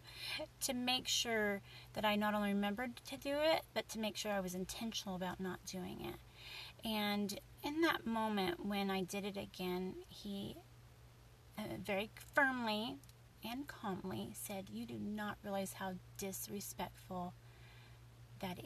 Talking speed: 140 wpm